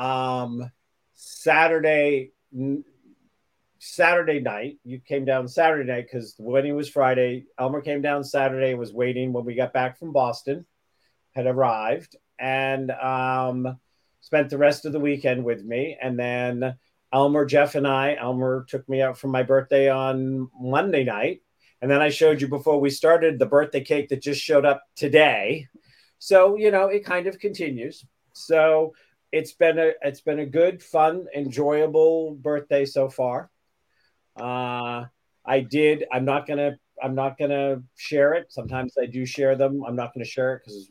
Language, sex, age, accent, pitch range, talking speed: English, male, 40-59, American, 125-155 Hz, 165 wpm